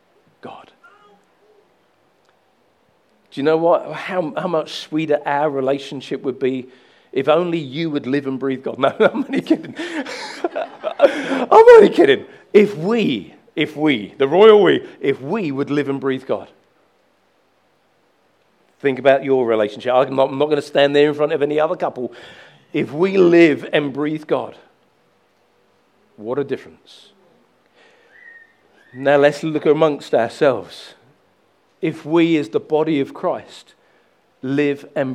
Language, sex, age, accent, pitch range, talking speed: English, male, 40-59, British, 135-190 Hz, 140 wpm